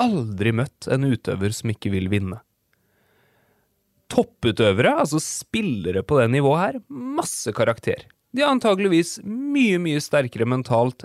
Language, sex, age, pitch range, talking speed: English, male, 30-49, 105-160 Hz, 130 wpm